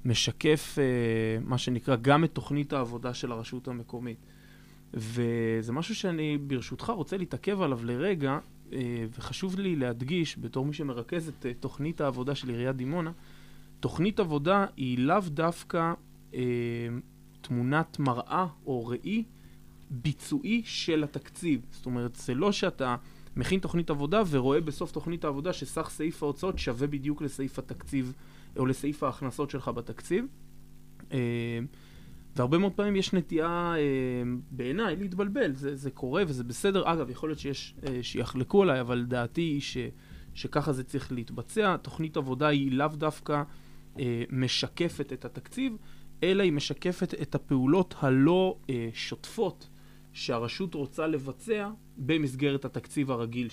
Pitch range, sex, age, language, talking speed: 125-165 Hz, male, 20-39, Hebrew, 135 wpm